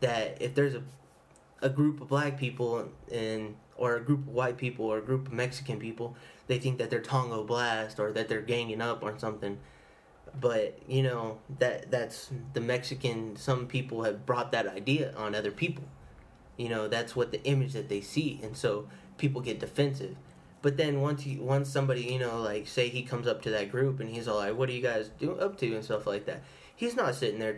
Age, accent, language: 20-39, American, English